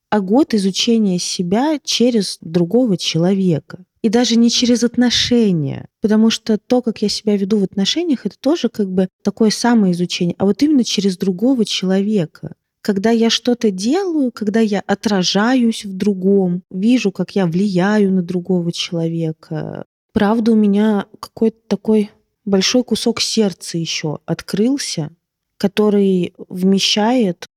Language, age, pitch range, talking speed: Russian, 20-39, 180-225 Hz, 135 wpm